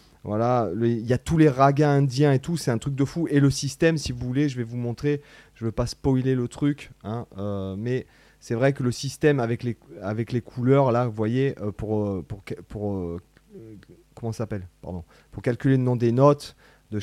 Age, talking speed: 30-49, 220 wpm